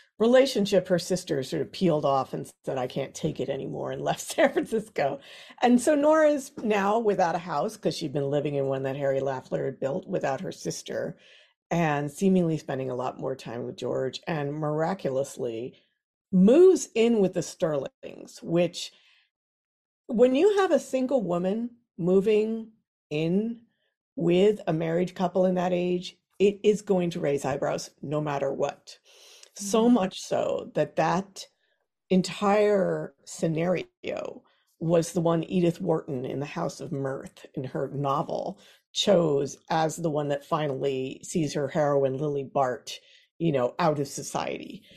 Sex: female